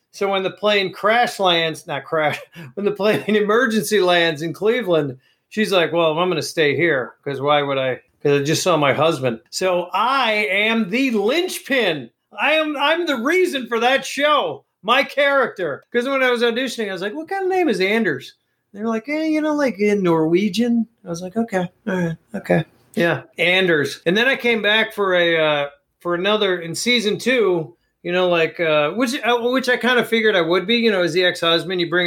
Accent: American